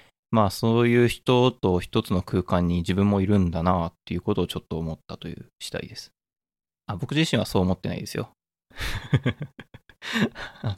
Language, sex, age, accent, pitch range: Japanese, male, 20-39, native, 95-135 Hz